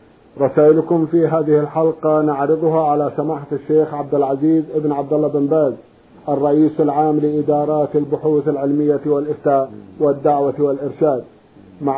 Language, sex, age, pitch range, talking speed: Arabic, male, 50-69, 140-160 Hz, 120 wpm